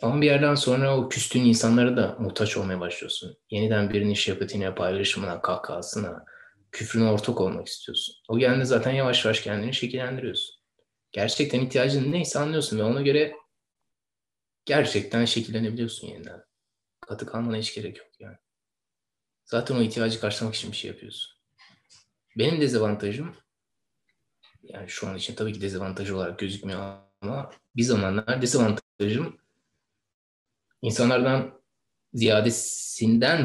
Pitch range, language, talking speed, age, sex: 105-130 Hz, Turkish, 125 wpm, 20-39, male